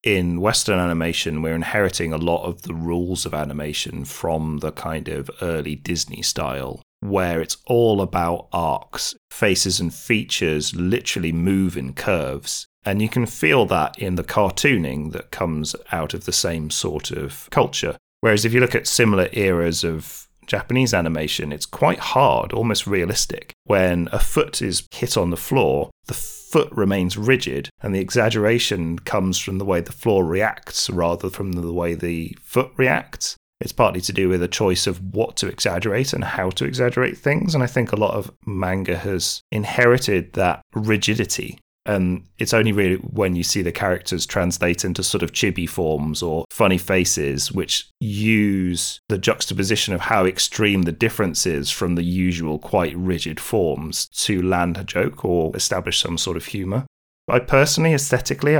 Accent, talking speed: British, 170 wpm